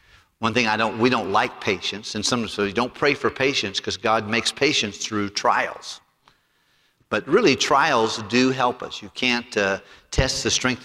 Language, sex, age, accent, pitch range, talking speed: English, male, 50-69, American, 100-120 Hz, 185 wpm